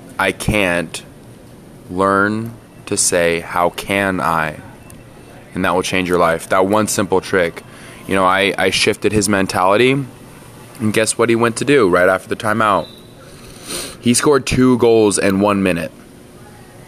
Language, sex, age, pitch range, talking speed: English, male, 20-39, 90-115 Hz, 155 wpm